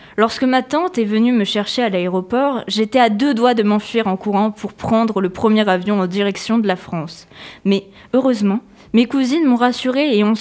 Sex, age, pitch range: female, 20-39, 200-255 Hz